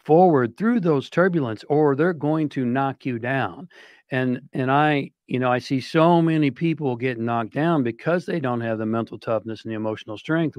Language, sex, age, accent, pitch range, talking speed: English, male, 50-69, American, 115-150 Hz, 200 wpm